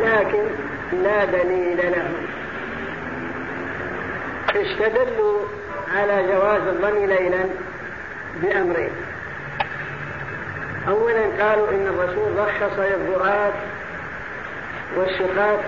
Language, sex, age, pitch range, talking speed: Arabic, female, 50-69, 180-205 Hz, 65 wpm